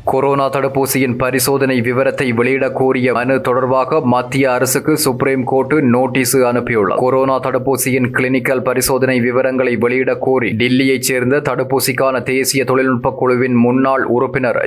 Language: English